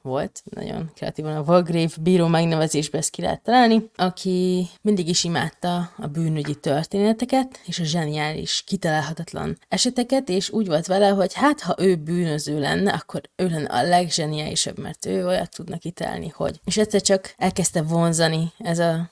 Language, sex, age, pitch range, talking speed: Hungarian, female, 20-39, 160-195 Hz, 160 wpm